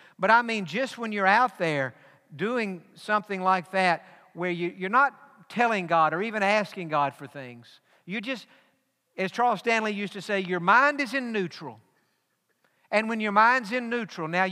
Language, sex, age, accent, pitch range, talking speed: English, male, 50-69, American, 160-210 Hz, 180 wpm